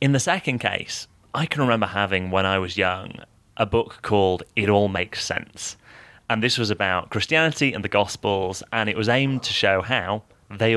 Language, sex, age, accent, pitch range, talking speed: English, male, 30-49, British, 95-120 Hz, 195 wpm